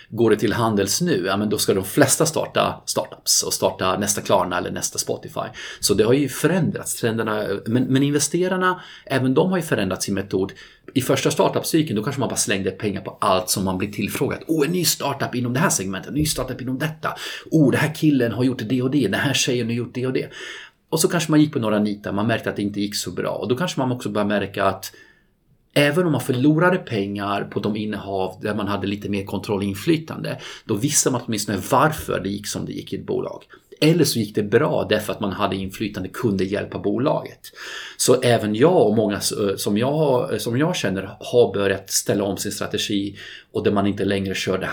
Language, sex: Swedish, male